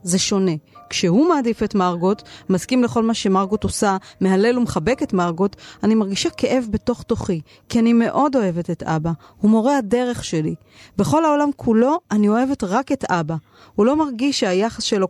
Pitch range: 185-235 Hz